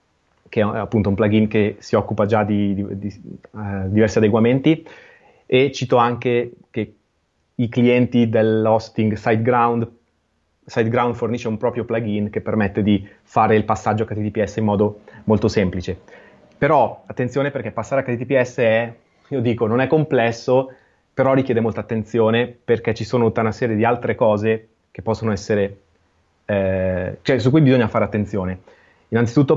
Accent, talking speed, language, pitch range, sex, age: native, 155 wpm, Italian, 105-120 Hz, male, 30-49